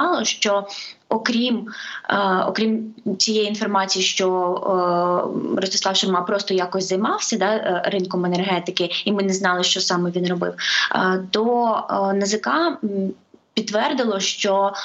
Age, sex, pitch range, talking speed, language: 20-39, female, 180-210 Hz, 120 wpm, Ukrainian